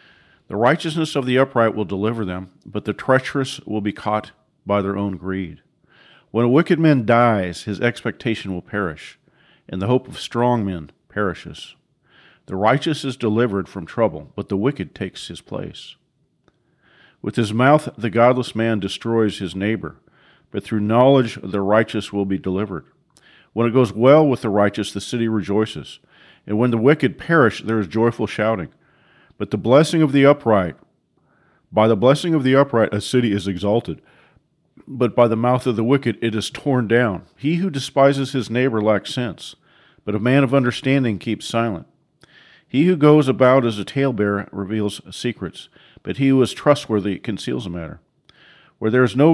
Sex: male